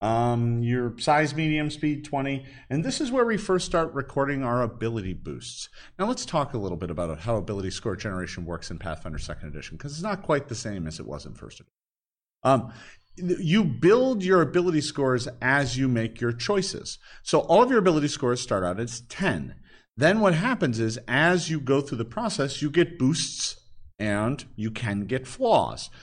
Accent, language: American, English